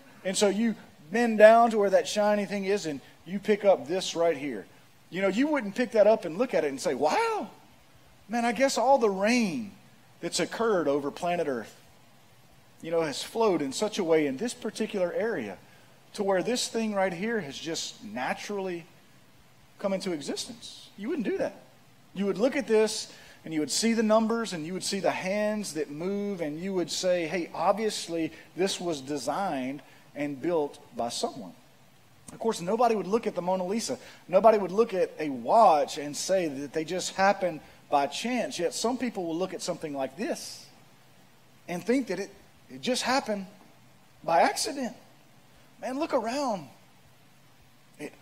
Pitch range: 165-230 Hz